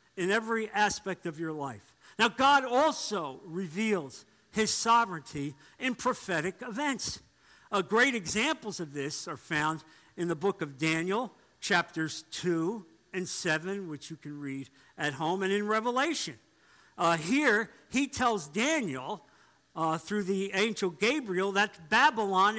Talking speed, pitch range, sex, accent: 140 wpm, 165-235 Hz, male, American